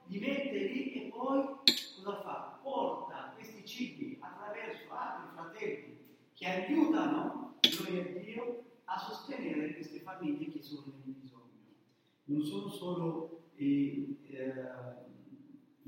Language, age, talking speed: Italian, 40-59, 115 wpm